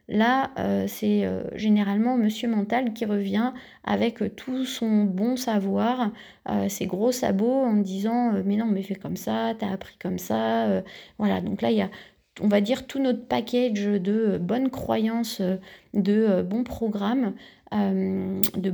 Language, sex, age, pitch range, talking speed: French, female, 30-49, 200-230 Hz, 145 wpm